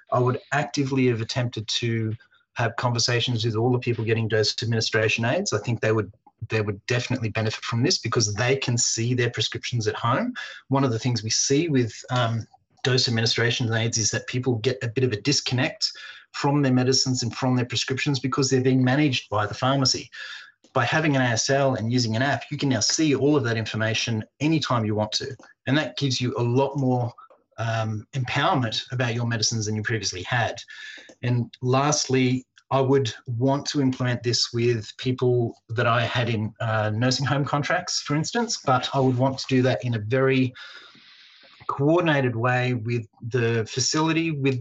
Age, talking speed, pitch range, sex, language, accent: 30-49, 190 wpm, 115-130 Hz, male, English, Australian